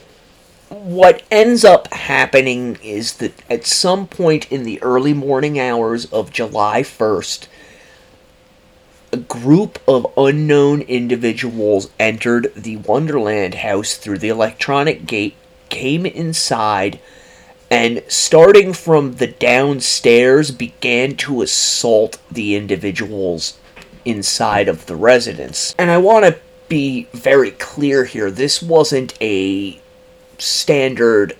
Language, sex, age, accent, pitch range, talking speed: English, male, 30-49, American, 115-155 Hz, 110 wpm